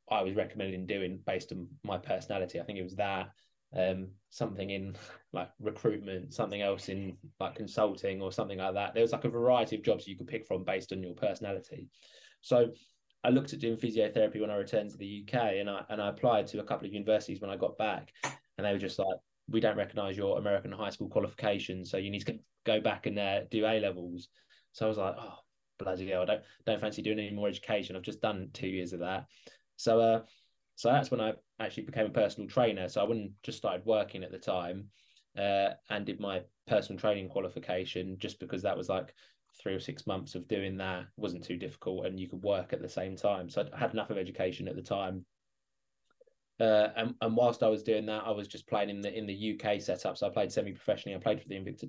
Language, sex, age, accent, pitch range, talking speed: English, male, 20-39, British, 95-110 Hz, 230 wpm